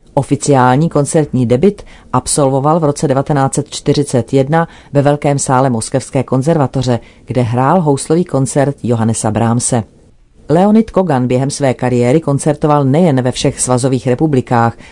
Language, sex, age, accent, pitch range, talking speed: Czech, female, 40-59, native, 125-150 Hz, 115 wpm